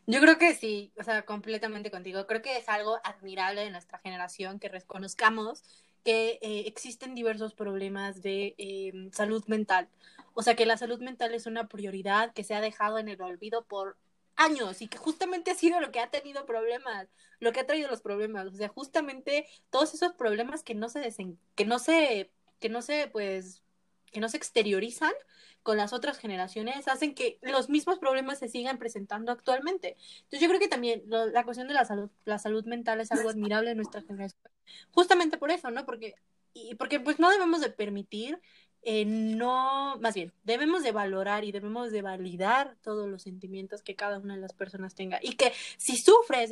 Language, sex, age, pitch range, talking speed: Spanish, female, 20-39, 205-275 Hz, 180 wpm